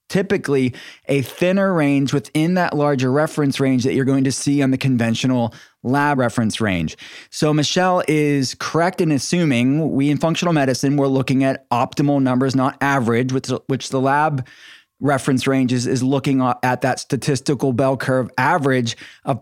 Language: English